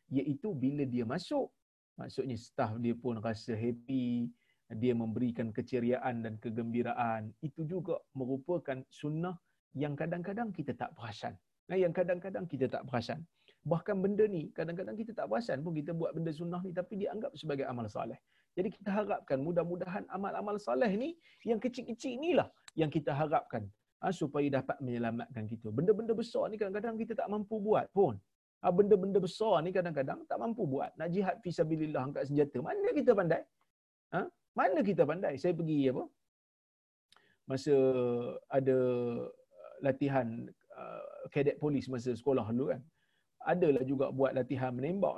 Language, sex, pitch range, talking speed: Malayalam, male, 130-185 Hz, 150 wpm